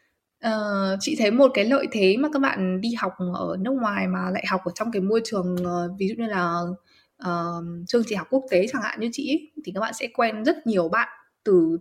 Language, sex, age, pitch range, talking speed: Vietnamese, female, 20-39, 180-255 Hz, 245 wpm